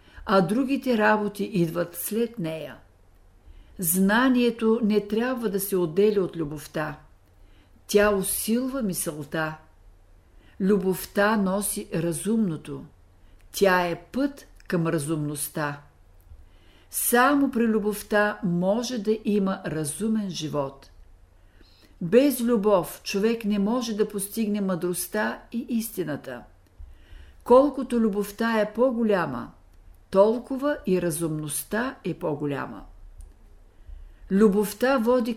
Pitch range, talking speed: 150-220 Hz, 90 wpm